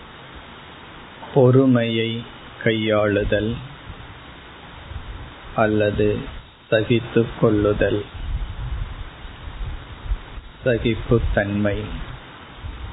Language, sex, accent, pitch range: Tamil, male, native, 105-120 Hz